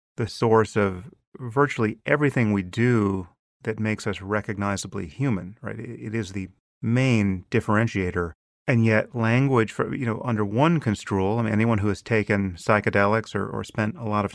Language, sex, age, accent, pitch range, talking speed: English, male, 40-59, American, 100-120 Hz, 165 wpm